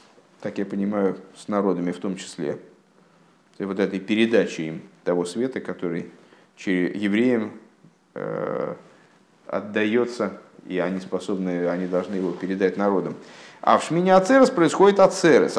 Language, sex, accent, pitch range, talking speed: Russian, male, native, 100-155 Hz, 120 wpm